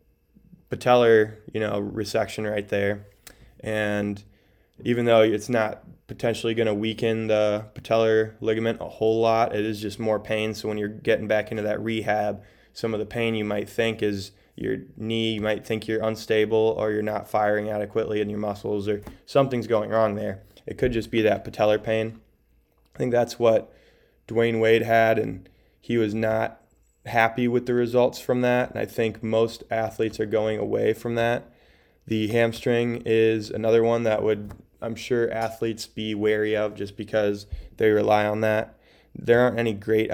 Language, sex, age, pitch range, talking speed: English, male, 20-39, 105-115 Hz, 180 wpm